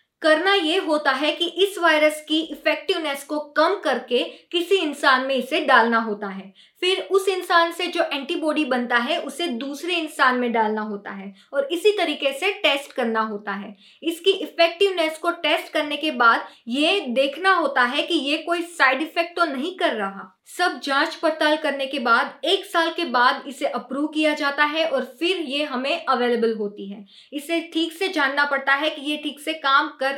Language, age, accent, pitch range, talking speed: Hindi, 20-39, native, 255-315 Hz, 190 wpm